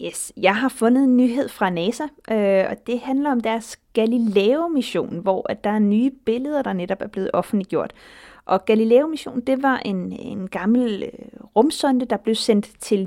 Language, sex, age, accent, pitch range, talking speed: Danish, female, 30-49, native, 195-245 Hz, 160 wpm